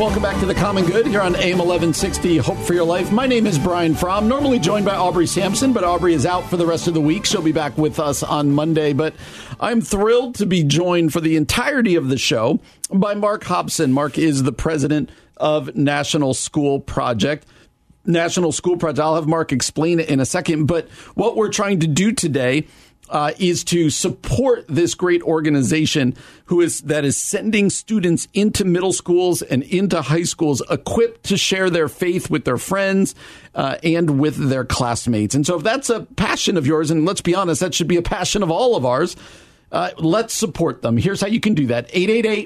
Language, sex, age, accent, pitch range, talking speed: English, male, 50-69, American, 155-195 Hz, 210 wpm